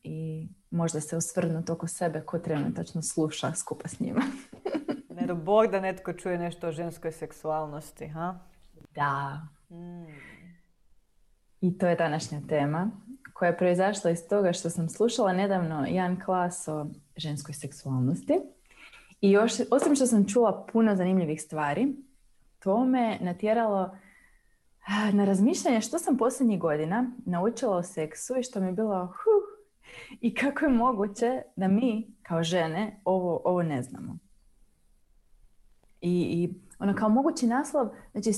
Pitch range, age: 160-225 Hz, 20-39